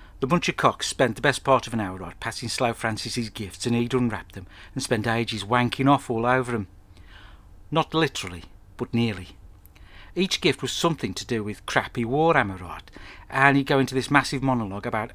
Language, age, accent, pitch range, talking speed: English, 60-79, British, 95-140 Hz, 200 wpm